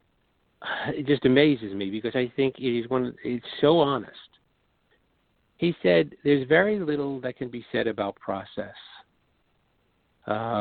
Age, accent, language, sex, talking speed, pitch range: 50-69, American, English, male, 140 wpm, 110-140 Hz